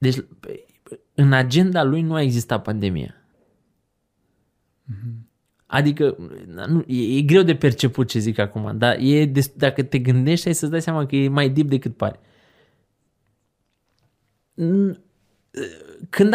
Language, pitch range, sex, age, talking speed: Romanian, 125-175 Hz, male, 20-39, 120 wpm